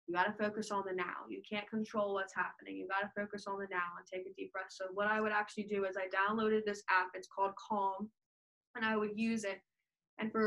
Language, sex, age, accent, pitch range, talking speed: English, female, 20-39, American, 185-205 Hz, 260 wpm